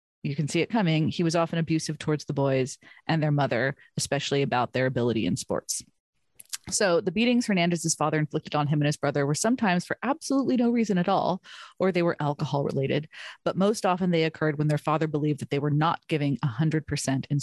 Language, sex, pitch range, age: English, female, 150-190 Hz, 30-49